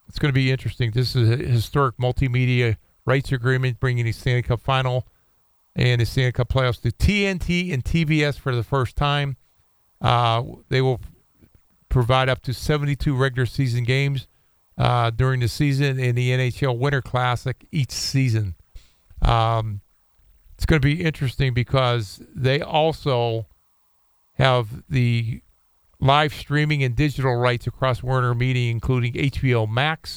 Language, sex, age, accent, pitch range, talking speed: English, male, 50-69, American, 115-135 Hz, 145 wpm